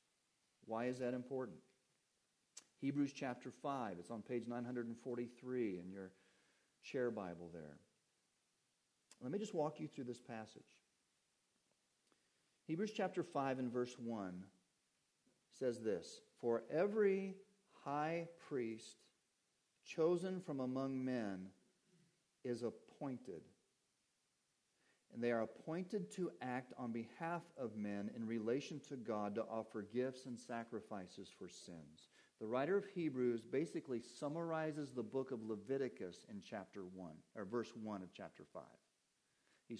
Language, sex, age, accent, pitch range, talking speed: English, male, 50-69, American, 110-155 Hz, 125 wpm